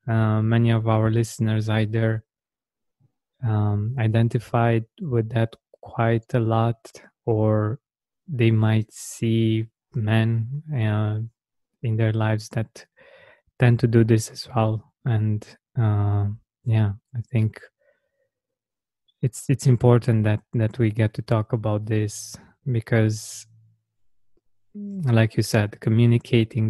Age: 20-39